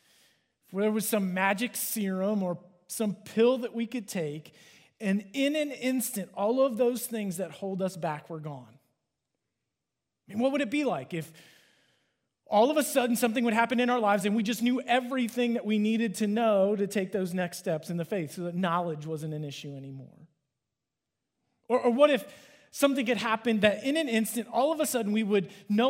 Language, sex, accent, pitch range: English, male, American, 185-240 Hz